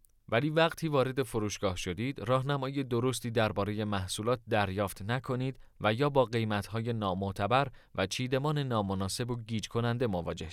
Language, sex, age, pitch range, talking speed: Persian, male, 30-49, 105-140 Hz, 130 wpm